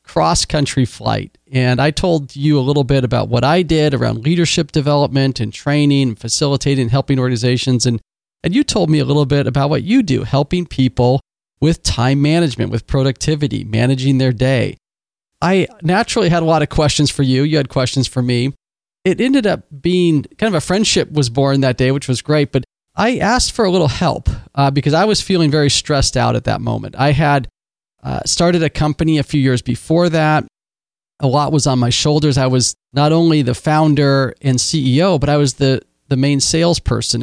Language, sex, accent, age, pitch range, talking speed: English, male, American, 40-59, 130-155 Hz, 200 wpm